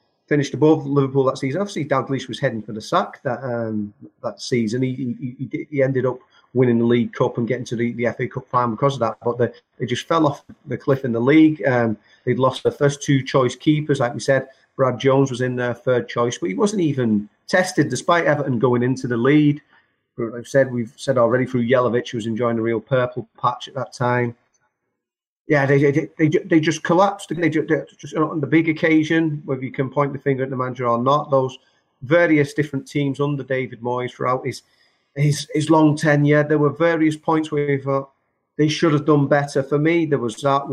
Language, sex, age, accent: English, male, 40-59, British